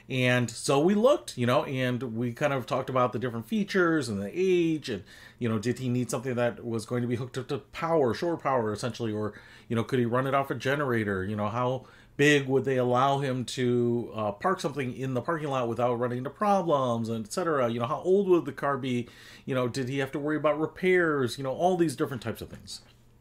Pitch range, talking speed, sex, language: 115-155 Hz, 245 wpm, male, English